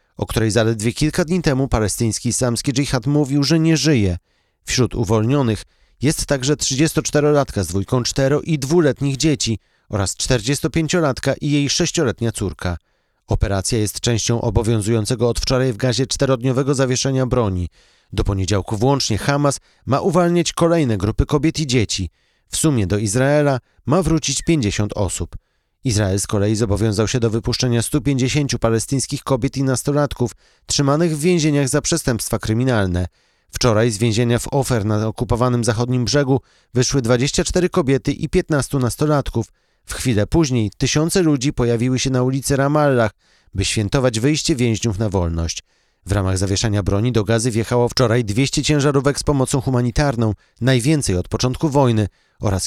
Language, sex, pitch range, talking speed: Polish, male, 110-145 Hz, 145 wpm